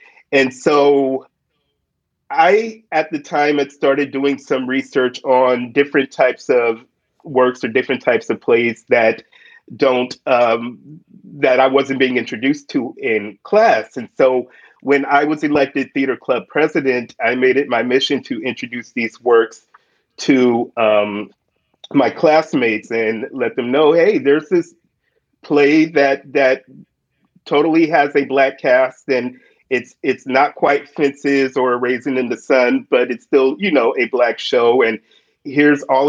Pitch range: 125-145 Hz